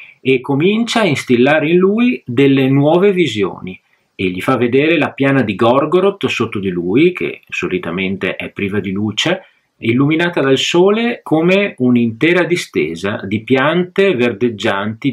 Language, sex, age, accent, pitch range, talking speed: Italian, male, 40-59, native, 105-145 Hz, 140 wpm